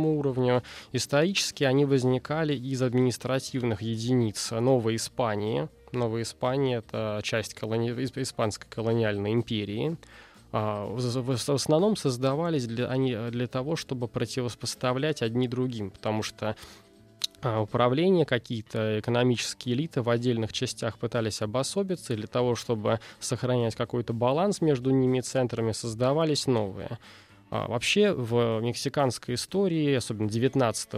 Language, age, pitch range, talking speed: Russian, 20-39, 110-130 Hz, 110 wpm